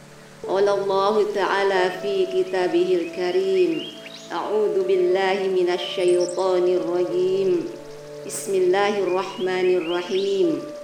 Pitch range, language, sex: 185-225 Hz, Indonesian, female